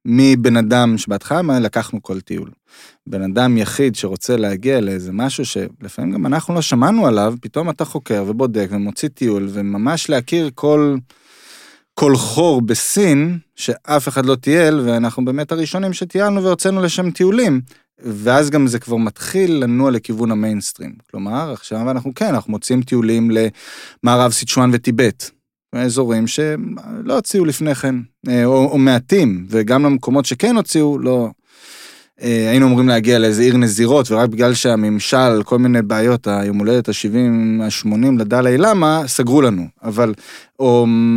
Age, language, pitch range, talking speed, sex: 20-39, Hebrew, 110-145 Hz, 140 wpm, male